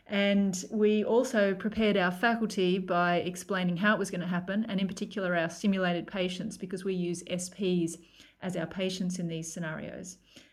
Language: English